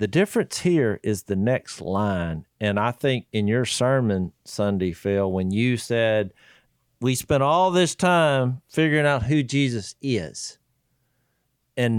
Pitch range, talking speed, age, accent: 100-130 Hz, 145 wpm, 50-69, American